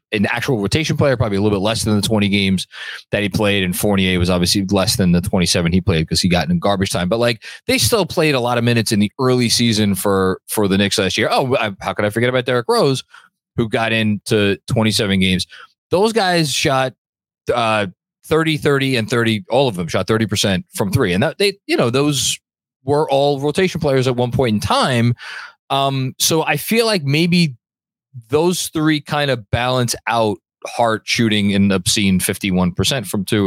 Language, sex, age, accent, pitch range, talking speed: English, male, 30-49, American, 100-135 Hz, 205 wpm